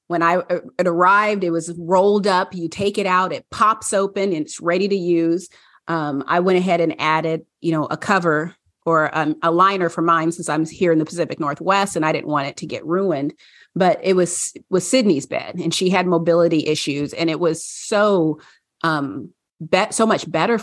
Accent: American